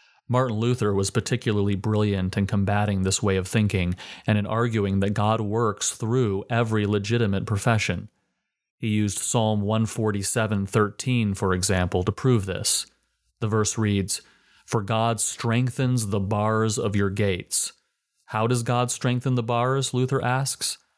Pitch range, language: 100-120 Hz, English